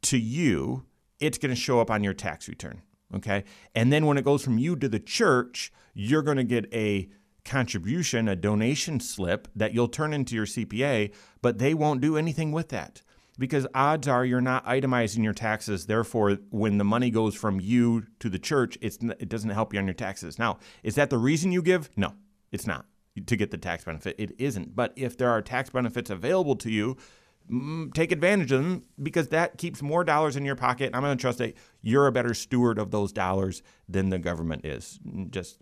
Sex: male